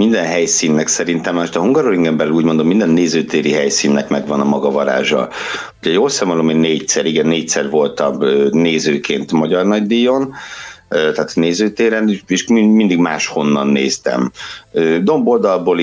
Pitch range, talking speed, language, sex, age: 75-105 Hz, 130 wpm, Hungarian, male, 60-79